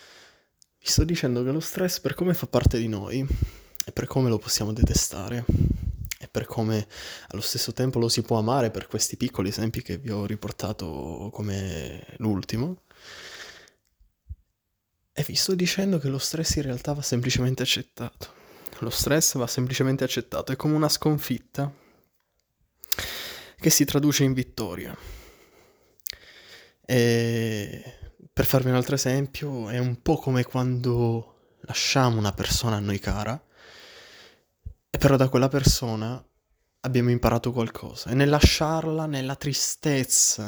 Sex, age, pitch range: male, 20-39, 110-135 Hz